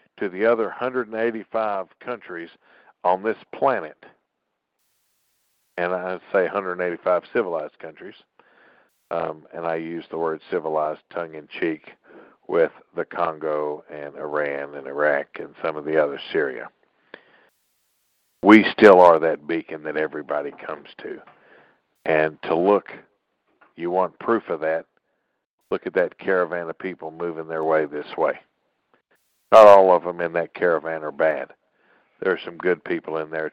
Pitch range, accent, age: 80-90 Hz, American, 60-79